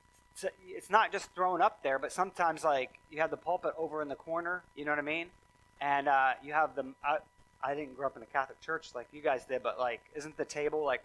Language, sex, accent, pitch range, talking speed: English, male, American, 130-165 Hz, 250 wpm